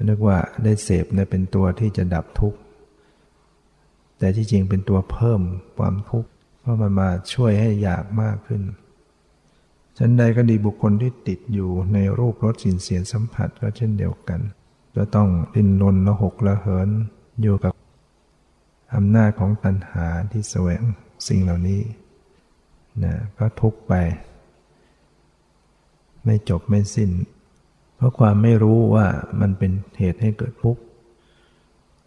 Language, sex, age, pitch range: Thai, male, 60-79, 95-110 Hz